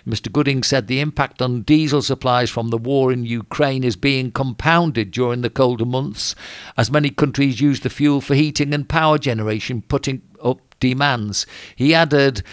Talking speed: 175 wpm